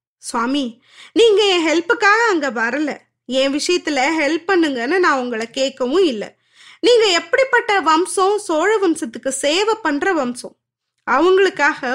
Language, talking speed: Tamil, 115 wpm